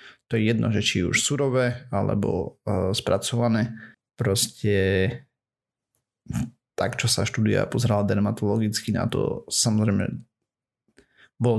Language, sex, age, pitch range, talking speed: Slovak, male, 30-49, 105-125 Hz, 105 wpm